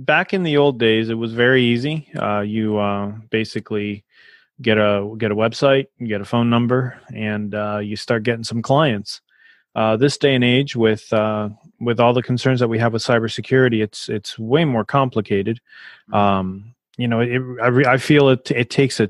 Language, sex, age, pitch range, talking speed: English, male, 30-49, 110-130 Hz, 200 wpm